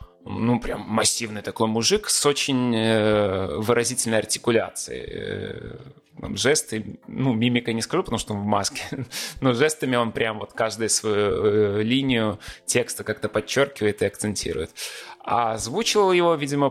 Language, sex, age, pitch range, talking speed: Russian, male, 20-39, 105-130 Hz, 130 wpm